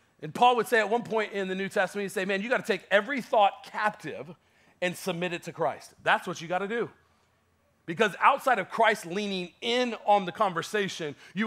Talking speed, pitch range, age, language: 220 wpm, 145-210 Hz, 40-59, English